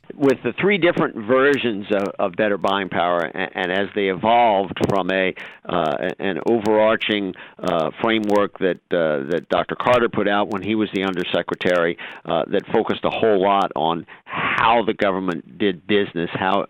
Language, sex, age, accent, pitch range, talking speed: English, male, 50-69, American, 95-110 Hz, 170 wpm